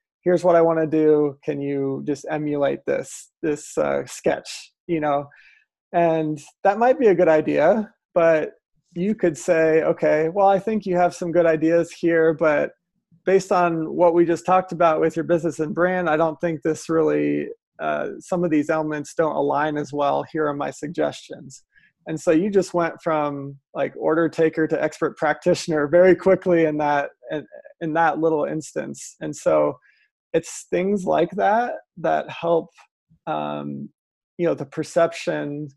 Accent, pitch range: American, 150-170 Hz